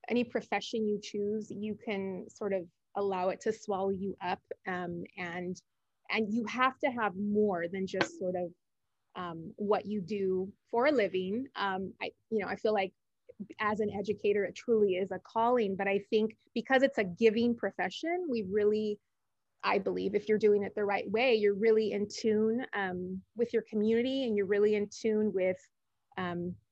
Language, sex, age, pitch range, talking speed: English, female, 30-49, 200-240 Hz, 185 wpm